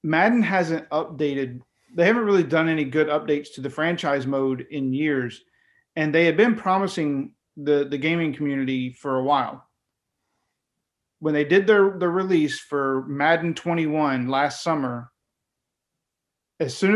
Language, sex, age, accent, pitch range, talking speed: English, male, 40-59, American, 145-180 Hz, 145 wpm